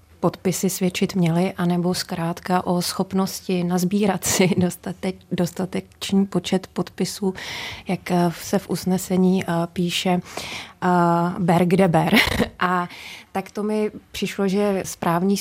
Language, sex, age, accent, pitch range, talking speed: Czech, female, 20-39, native, 180-195 Hz, 100 wpm